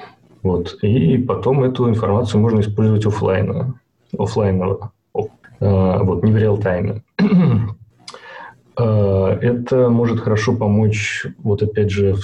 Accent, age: native, 30-49